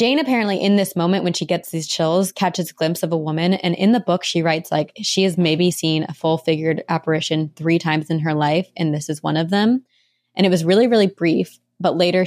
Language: English